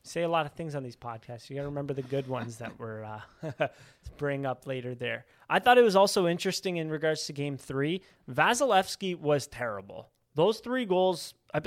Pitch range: 145-200 Hz